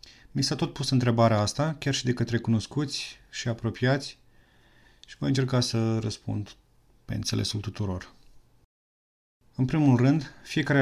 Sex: male